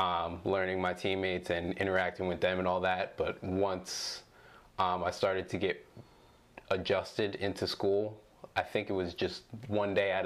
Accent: American